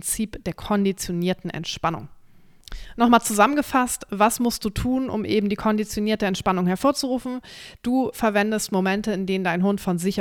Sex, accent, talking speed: female, German, 145 wpm